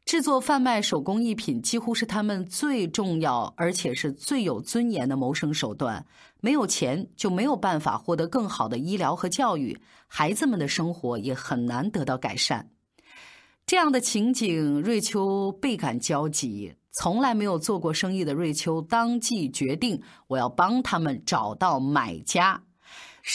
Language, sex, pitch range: Chinese, female, 155-230 Hz